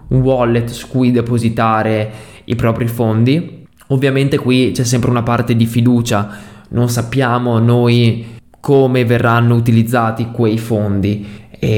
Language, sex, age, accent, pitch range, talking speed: Italian, male, 20-39, native, 115-145 Hz, 120 wpm